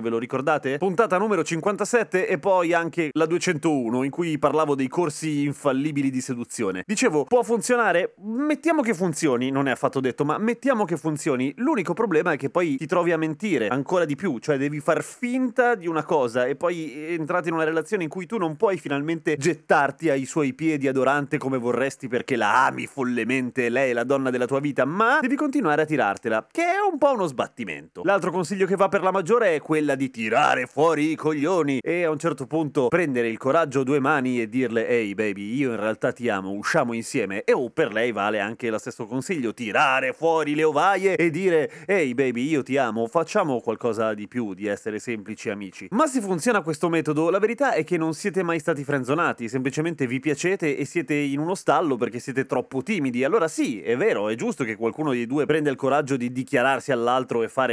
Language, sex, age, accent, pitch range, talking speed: Italian, male, 30-49, native, 130-175 Hz, 210 wpm